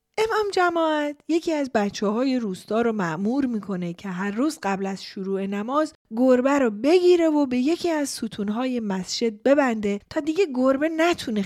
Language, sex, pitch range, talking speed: Persian, female, 200-290 Hz, 155 wpm